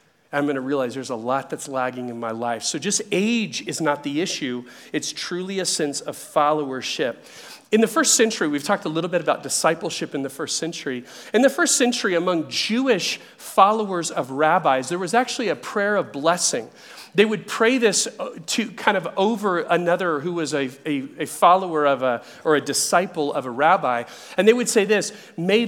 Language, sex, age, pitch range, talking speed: English, male, 40-59, 150-215 Hz, 195 wpm